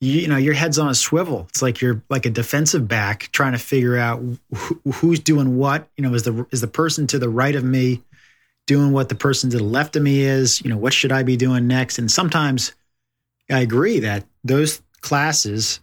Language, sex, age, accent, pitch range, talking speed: English, male, 30-49, American, 120-145 Hz, 220 wpm